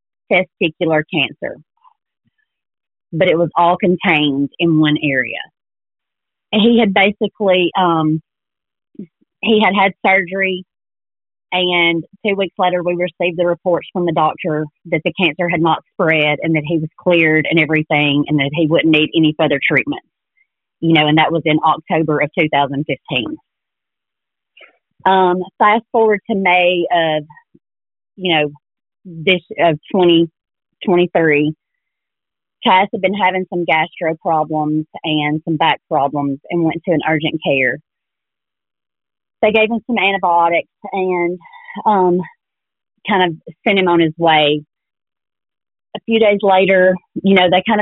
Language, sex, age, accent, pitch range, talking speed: English, female, 30-49, American, 160-190 Hz, 140 wpm